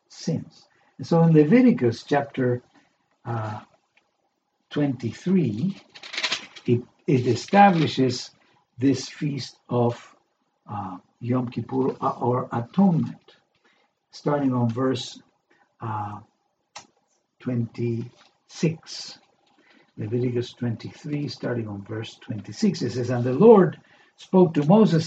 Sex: male